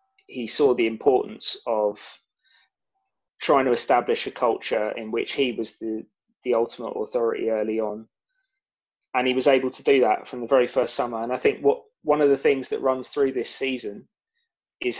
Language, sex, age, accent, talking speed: English, male, 20-39, British, 185 wpm